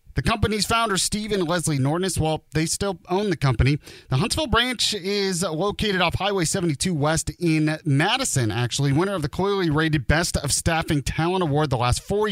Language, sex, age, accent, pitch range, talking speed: English, male, 30-49, American, 140-195 Hz, 180 wpm